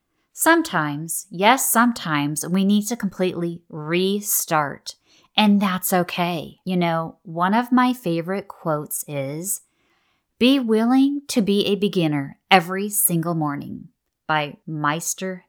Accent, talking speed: American, 115 wpm